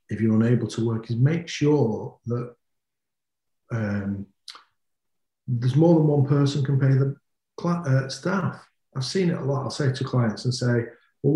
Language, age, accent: English, 50-69, British